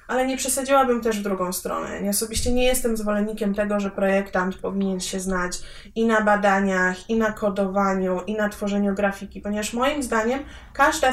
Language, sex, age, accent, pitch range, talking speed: Polish, female, 20-39, native, 200-245 Hz, 175 wpm